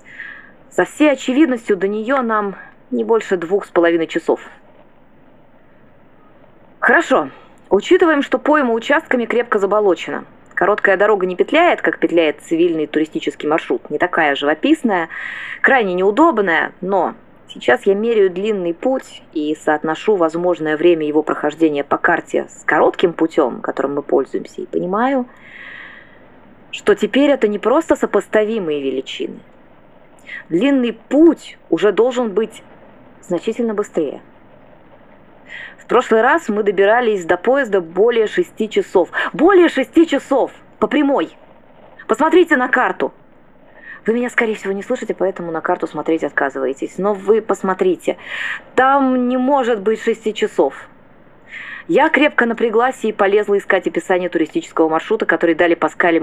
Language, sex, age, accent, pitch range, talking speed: Russian, female, 20-39, native, 175-270 Hz, 125 wpm